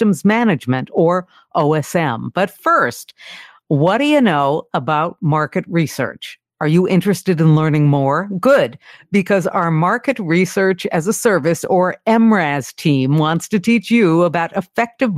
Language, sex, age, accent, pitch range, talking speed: English, female, 50-69, American, 155-195 Hz, 140 wpm